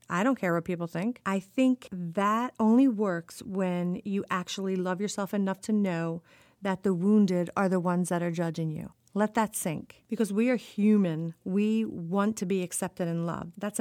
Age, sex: 40-59, female